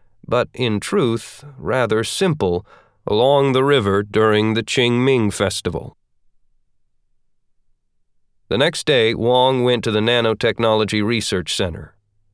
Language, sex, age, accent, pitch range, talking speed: English, male, 40-59, American, 100-130 Hz, 105 wpm